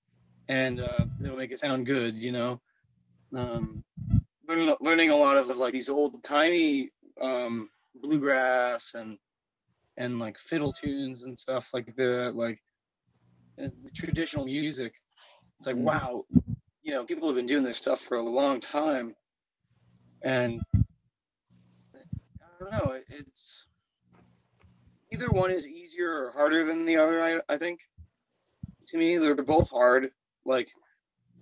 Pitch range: 115-155 Hz